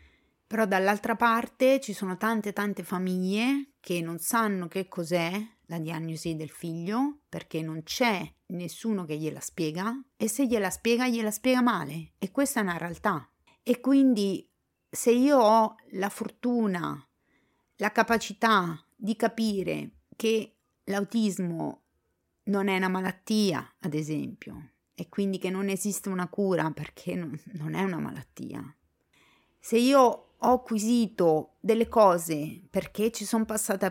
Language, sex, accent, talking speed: Italian, female, native, 135 wpm